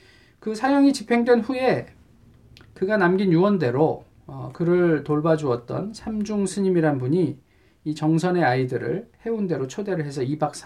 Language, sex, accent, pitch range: Korean, male, native, 130-200 Hz